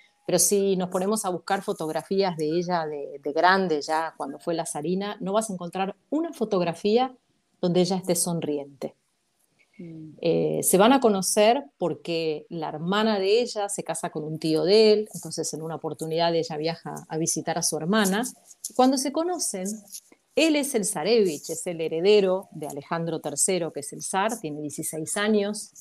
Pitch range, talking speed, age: 160-205 Hz, 175 wpm, 40-59